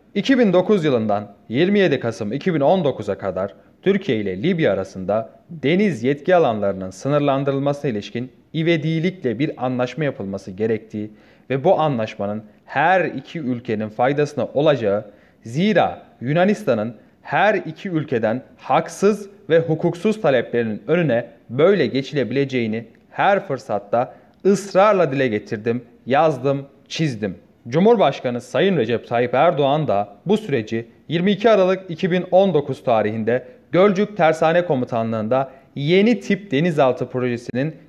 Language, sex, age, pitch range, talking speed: Turkish, male, 30-49, 120-170 Hz, 105 wpm